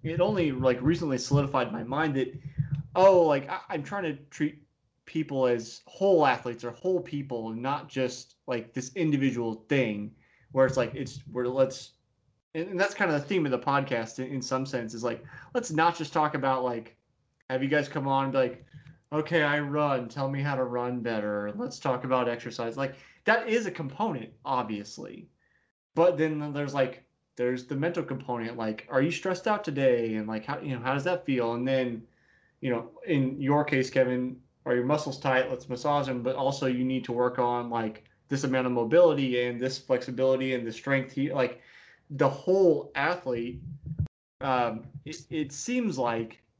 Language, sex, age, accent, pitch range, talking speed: English, male, 20-39, American, 125-150 Hz, 190 wpm